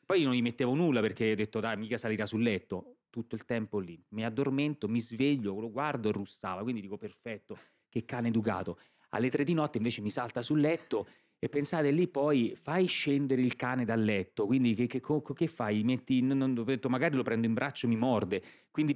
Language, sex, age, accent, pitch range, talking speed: Italian, male, 30-49, native, 120-170 Hz, 215 wpm